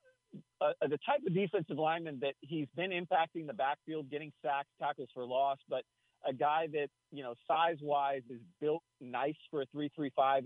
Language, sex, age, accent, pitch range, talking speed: English, male, 40-59, American, 130-150 Hz, 190 wpm